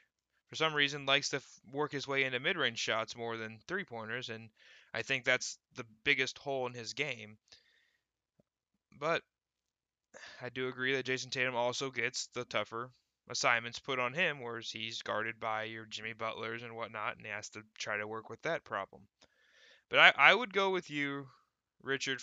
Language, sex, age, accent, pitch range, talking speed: English, male, 20-39, American, 115-140 Hz, 180 wpm